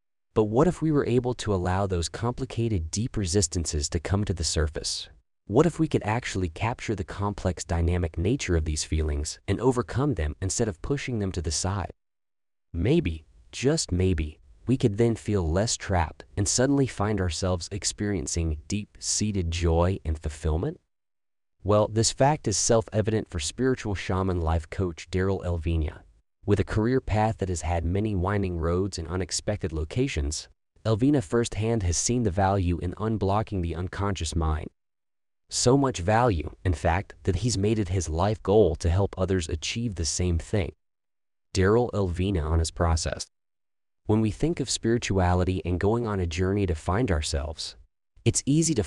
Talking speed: 165 wpm